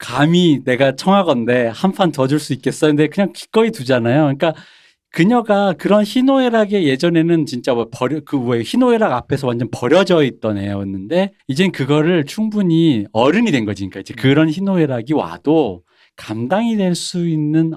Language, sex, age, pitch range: Korean, male, 40-59, 120-165 Hz